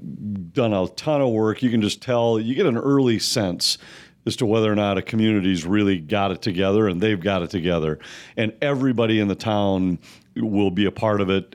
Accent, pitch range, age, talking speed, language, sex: American, 105-125 Hz, 40-59, 215 wpm, English, male